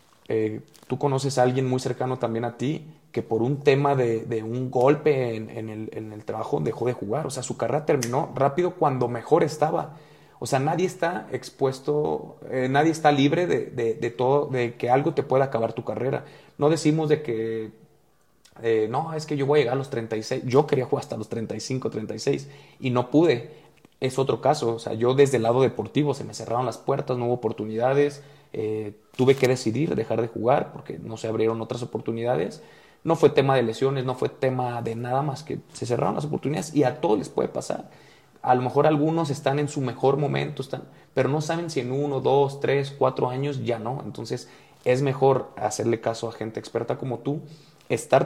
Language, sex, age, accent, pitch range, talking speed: Spanish, male, 30-49, Mexican, 120-145 Hz, 210 wpm